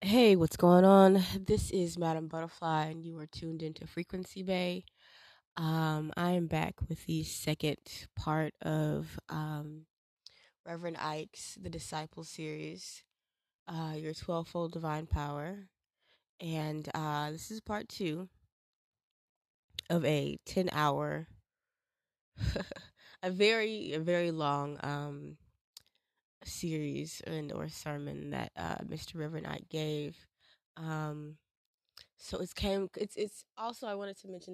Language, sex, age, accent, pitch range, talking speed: English, female, 20-39, American, 155-180 Hz, 120 wpm